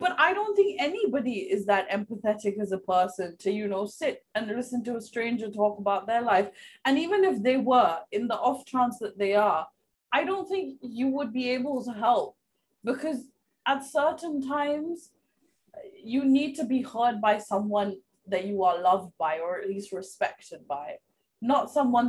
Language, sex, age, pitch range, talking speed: Hindi, female, 20-39, 190-250 Hz, 180 wpm